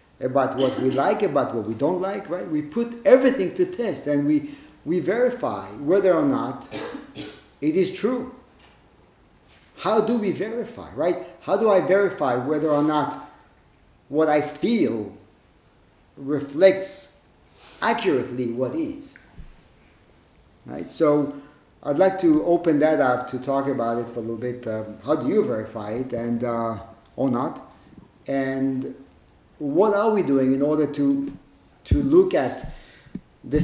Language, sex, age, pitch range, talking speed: English, male, 50-69, 130-160 Hz, 145 wpm